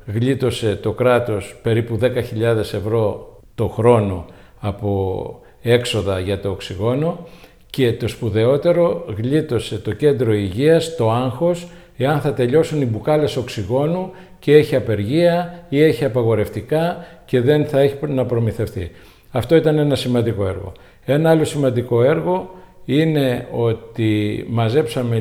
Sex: male